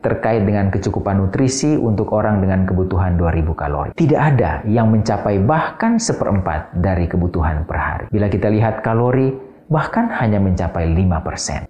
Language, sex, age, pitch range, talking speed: Indonesian, male, 40-59, 95-145 Hz, 145 wpm